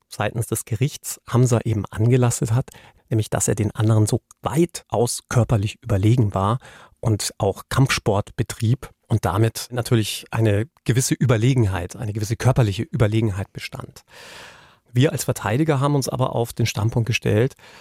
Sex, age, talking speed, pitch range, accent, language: male, 40-59, 140 wpm, 110-130 Hz, German, German